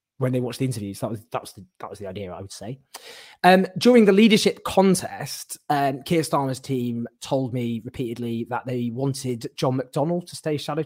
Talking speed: 205 wpm